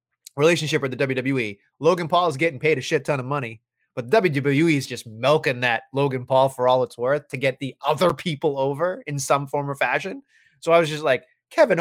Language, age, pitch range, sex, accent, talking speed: English, 30-49, 135-185 Hz, male, American, 220 wpm